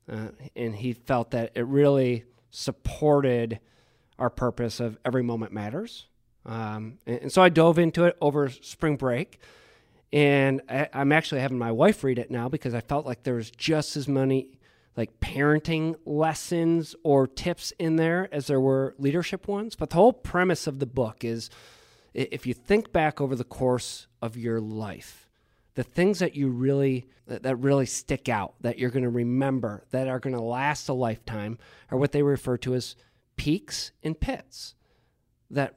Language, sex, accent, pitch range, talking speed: English, male, American, 120-155 Hz, 170 wpm